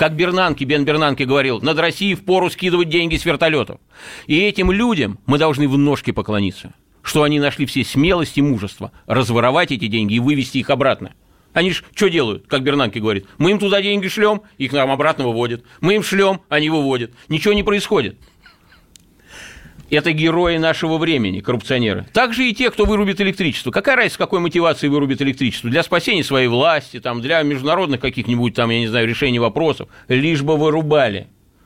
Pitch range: 110-150 Hz